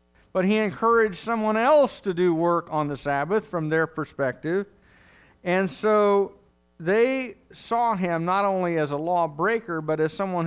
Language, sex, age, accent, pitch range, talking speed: English, male, 50-69, American, 145-185 Hz, 155 wpm